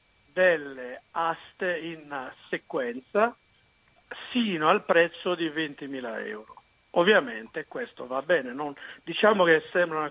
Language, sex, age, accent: Italian, male, 50-69, native